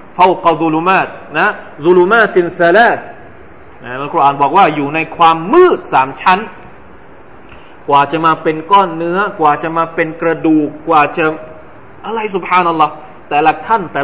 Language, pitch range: Thai, 150-185 Hz